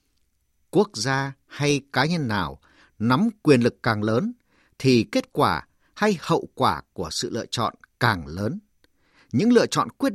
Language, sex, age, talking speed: Vietnamese, male, 50-69, 160 wpm